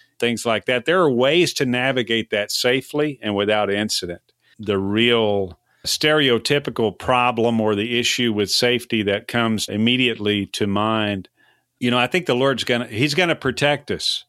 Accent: American